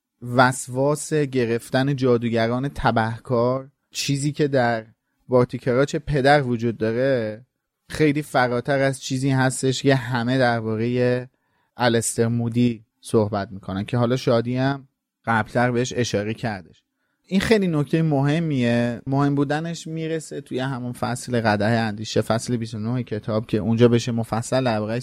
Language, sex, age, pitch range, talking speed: Persian, male, 30-49, 120-145 Hz, 125 wpm